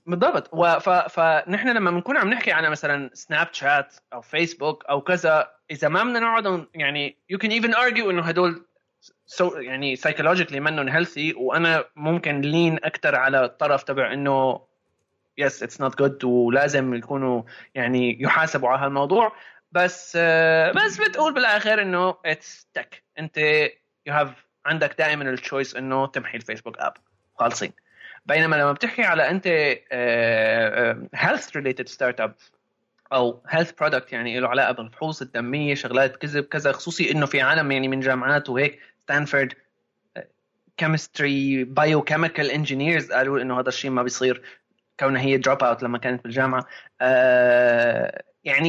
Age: 20-39